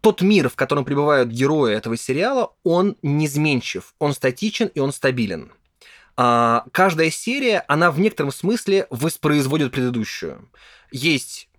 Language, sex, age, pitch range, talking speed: Russian, male, 20-39, 120-175 Hz, 125 wpm